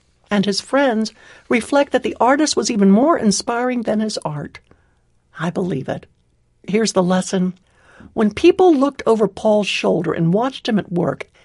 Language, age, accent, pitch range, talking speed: English, 60-79, American, 180-255 Hz, 160 wpm